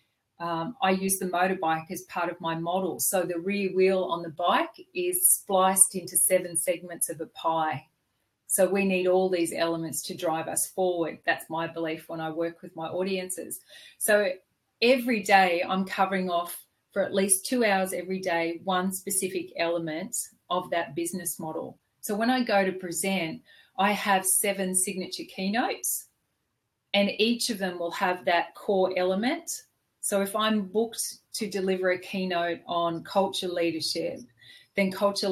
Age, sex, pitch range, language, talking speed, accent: 40-59, female, 170-195 Hz, English, 165 wpm, Australian